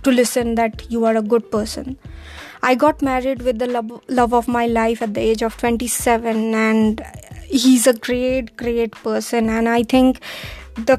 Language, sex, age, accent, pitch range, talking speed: English, female, 20-39, Indian, 235-275 Hz, 180 wpm